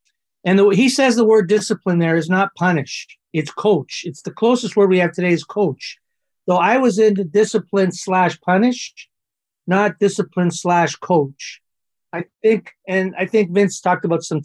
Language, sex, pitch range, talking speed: English, male, 160-200 Hz, 175 wpm